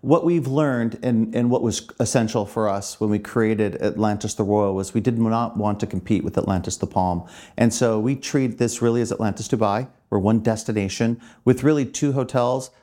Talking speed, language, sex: 200 wpm, English, male